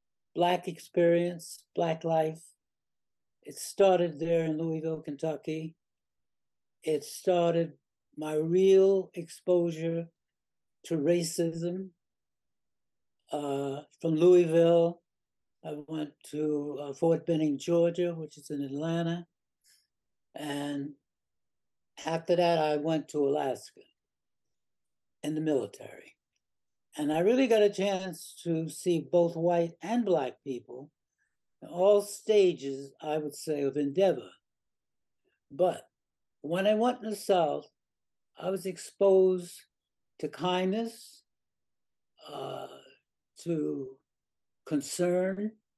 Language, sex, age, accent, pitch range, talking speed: English, male, 60-79, American, 150-175 Hz, 100 wpm